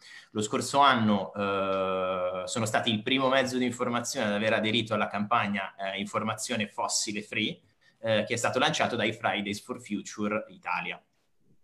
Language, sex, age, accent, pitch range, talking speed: Italian, male, 30-49, native, 95-115 Hz, 155 wpm